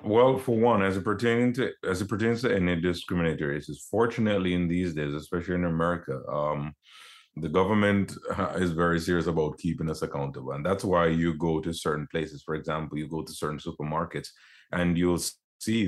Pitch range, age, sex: 80-100 Hz, 30-49, male